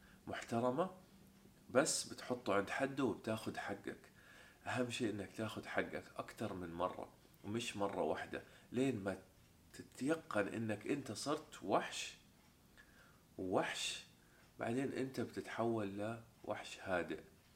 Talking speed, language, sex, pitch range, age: 105 wpm, Arabic, male, 95-130 Hz, 30-49